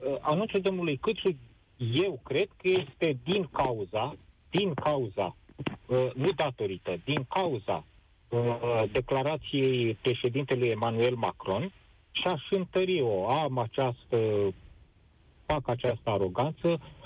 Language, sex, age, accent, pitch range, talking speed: Romanian, male, 40-59, native, 125-175 Hz, 100 wpm